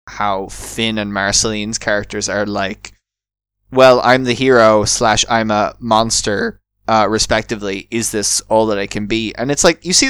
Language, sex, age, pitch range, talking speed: English, male, 20-39, 105-125 Hz, 170 wpm